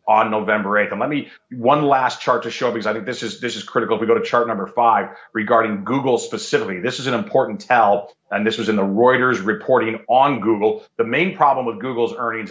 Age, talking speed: 40-59, 235 wpm